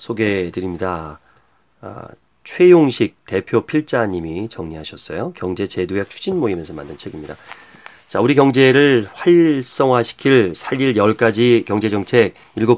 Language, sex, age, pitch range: Korean, male, 40-59, 100-145 Hz